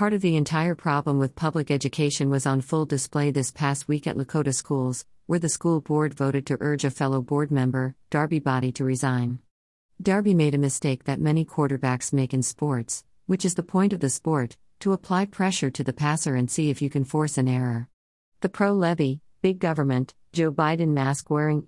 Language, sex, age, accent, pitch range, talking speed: English, female, 50-69, American, 135-160 Hz, 200 wpm